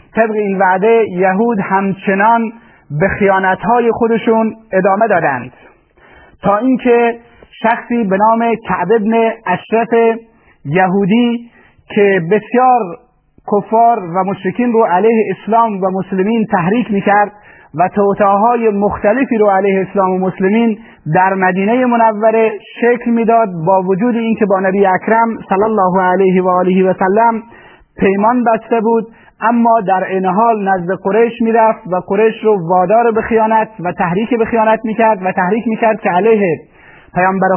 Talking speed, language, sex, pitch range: 135 wpm, Persian, male, 190-225 Hz